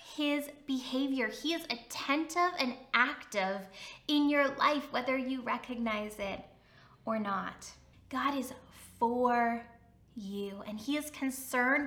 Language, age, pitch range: English, 10-29, 235-310 Hz